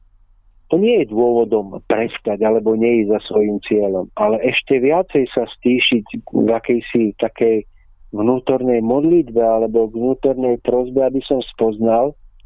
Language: Czech